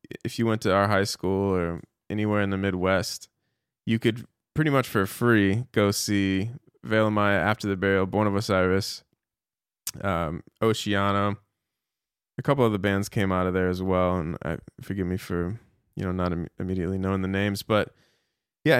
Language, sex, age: English, male, 20-39